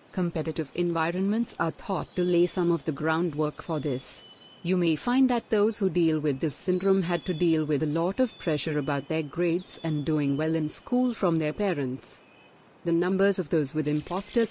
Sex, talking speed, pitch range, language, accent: female, 195 wpm, 155-195 Hz, Hindi, native